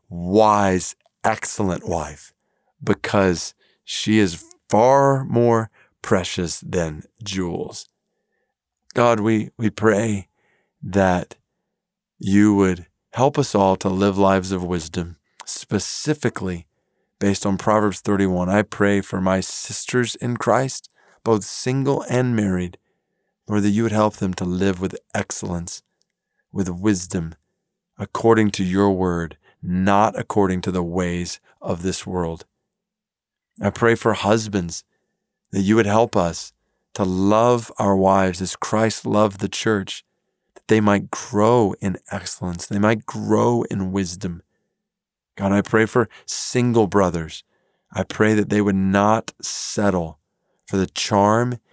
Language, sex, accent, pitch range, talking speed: English, male, American, 95-110 Hz, 130 wpm